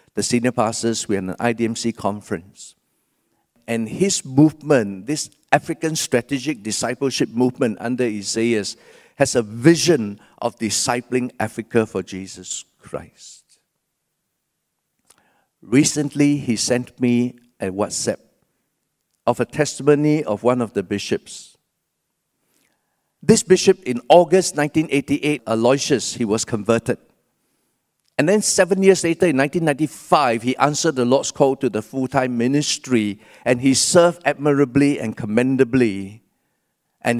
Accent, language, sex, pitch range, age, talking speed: Malaysian, English, male, 115-145 Hz, 50-69, 120 wpm